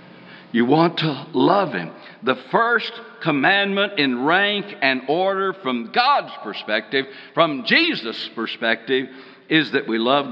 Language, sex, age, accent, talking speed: English, male, 60-79, American, 130 wpm